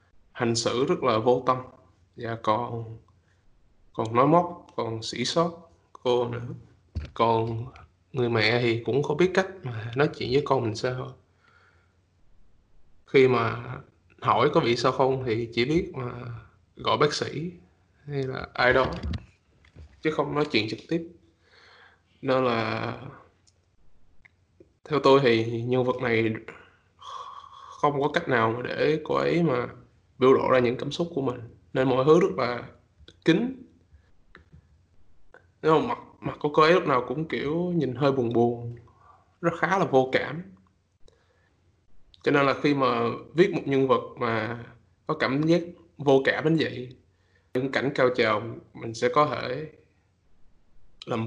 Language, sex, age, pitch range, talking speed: Vietnamese, male, 20-39, 100-140 Hz, 150 wpm